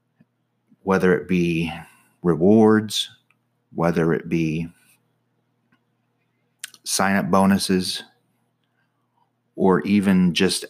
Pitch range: 85-100 Hz